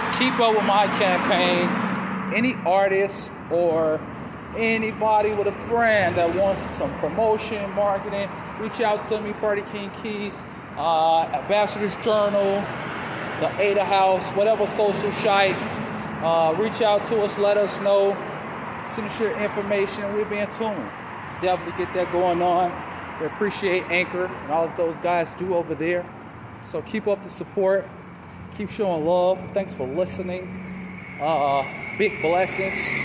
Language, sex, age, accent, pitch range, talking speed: English, male, 20-39, American, 145-205 Hz, 145 wpm